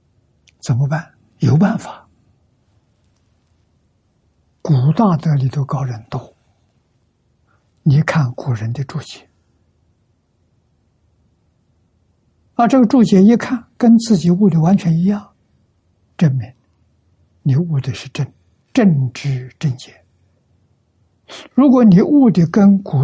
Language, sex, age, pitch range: Chinese, male, 60-79, 90-145 Hz